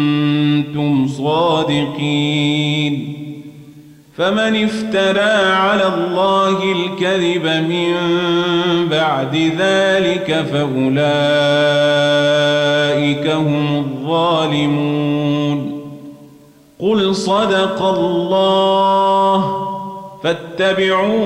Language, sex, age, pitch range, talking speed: Arabic, male, 40-59, 145-195 Hz, 45 wpm